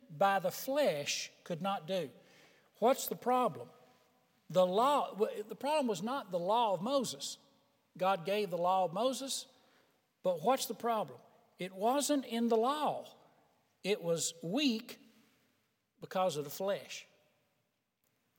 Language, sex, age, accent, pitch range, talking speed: English, male, 60-79, American, 170-235 Hz, 135 wpm